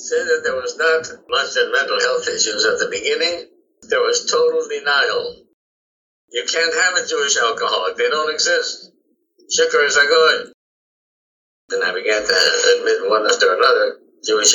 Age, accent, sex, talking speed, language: 60-79, American, male, 160 wpm, English